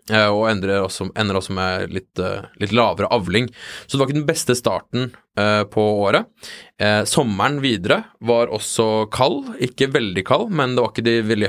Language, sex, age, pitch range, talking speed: English, male, 20-39, 100-115 Hz, 155 wpm